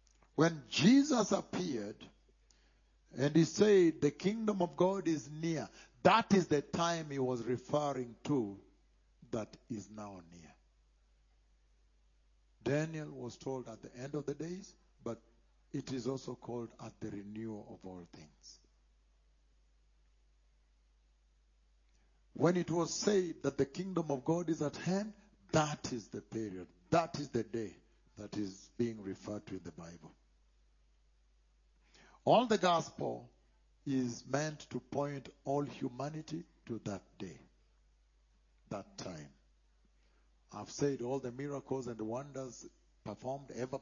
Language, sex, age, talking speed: English, male, 60-79, 130 wpm